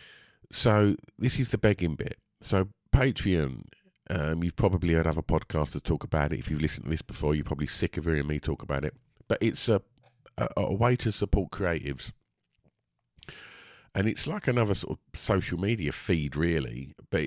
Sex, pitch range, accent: male, 80-105 Hz, British